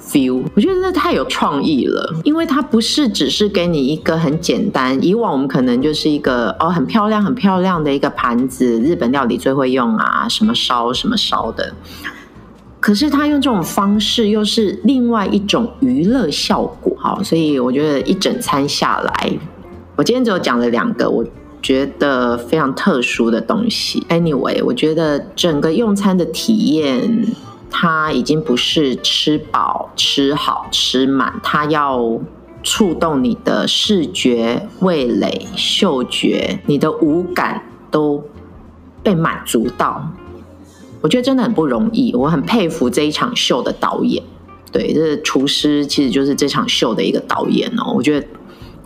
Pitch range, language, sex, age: 140-225 Hz, Chinese, female, 30-49